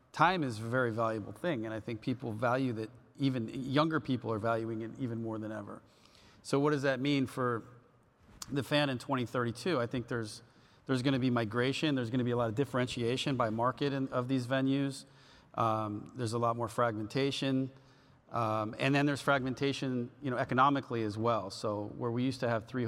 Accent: American